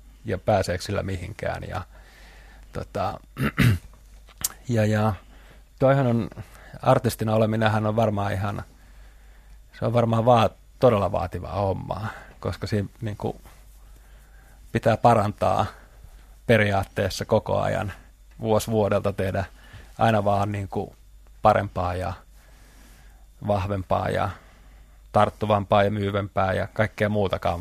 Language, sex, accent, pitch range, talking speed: Finnish, male, native, 95-115 Hz, 100 wpm